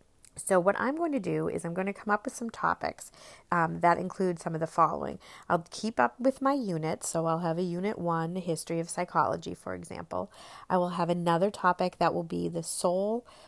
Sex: female